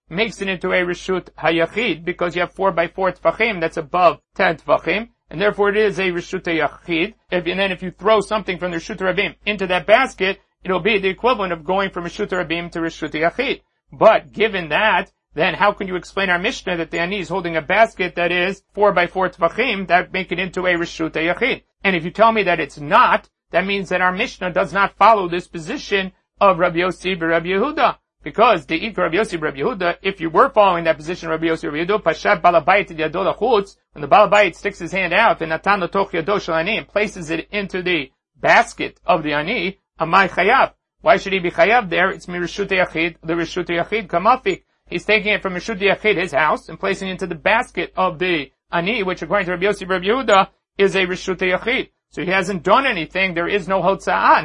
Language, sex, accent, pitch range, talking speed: English, male, American, 170-200 Hz, 210 wpm